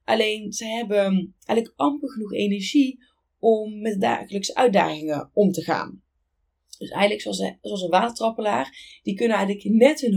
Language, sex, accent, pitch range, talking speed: Dutch, female, Dutch, 185-240 Hz, 150 wpm